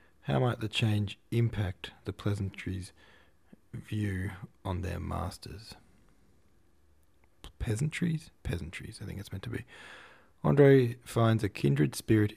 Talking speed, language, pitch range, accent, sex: 115 wpm, English, 90-110 Hz, Australian, male